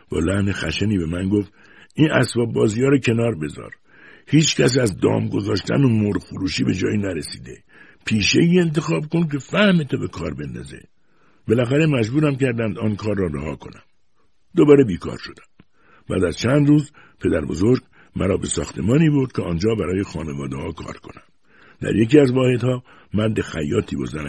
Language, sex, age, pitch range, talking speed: Persian, male, 60-79, 90-135 Hz, 165 wpm